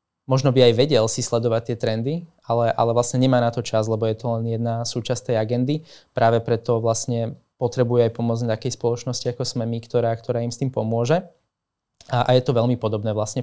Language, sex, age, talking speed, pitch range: Slovak, male, 20-39, 210 wpm, 115-130 Hz